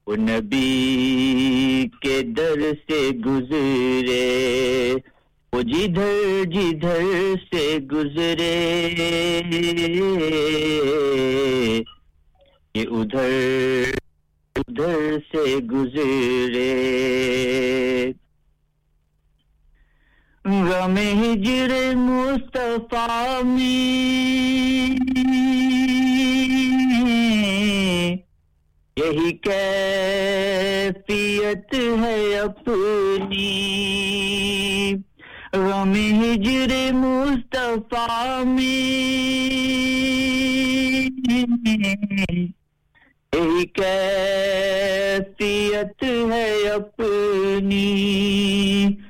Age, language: 50-69, English